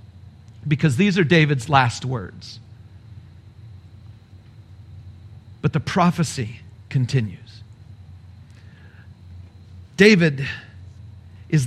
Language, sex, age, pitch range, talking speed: English, male, 40-59, 105-165 Hz, 60 wpm